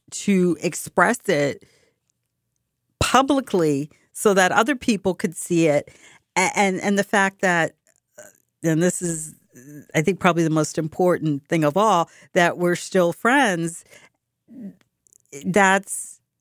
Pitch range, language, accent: 150-190 Hz, English, American